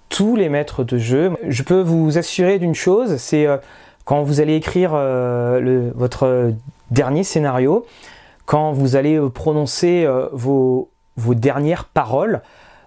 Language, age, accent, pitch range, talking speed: French, 30-49, French, 120-155 Hz, 125 wpm